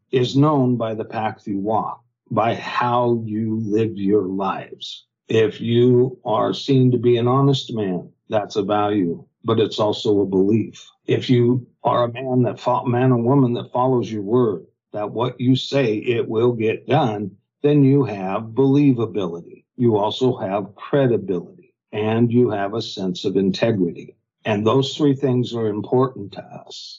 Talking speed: 165 wpm